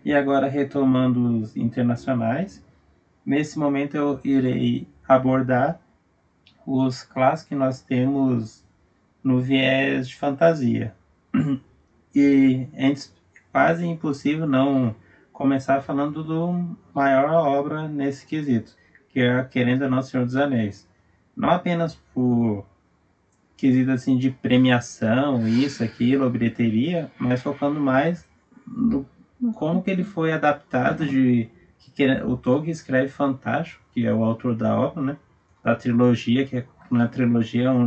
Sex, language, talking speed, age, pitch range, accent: male, Portuguese, 130 wpm, 20-39, 120-145 Hz, Brazilian